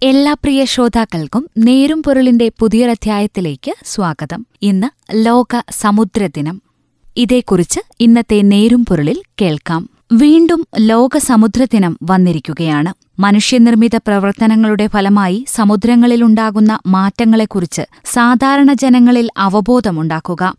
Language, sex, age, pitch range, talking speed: Malayalam, female, 20-39, 200-250 Hz, 75 wpm